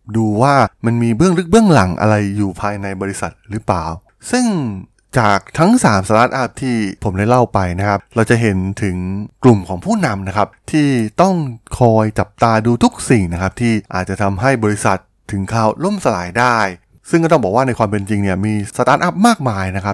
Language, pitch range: Thai, 100-125 Hz